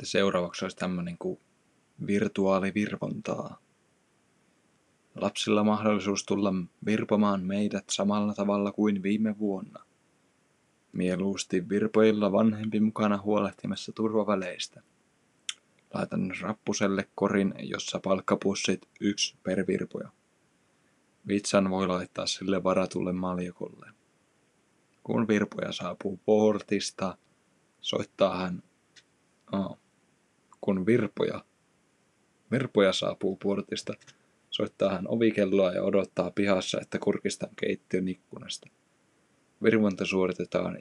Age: 20-39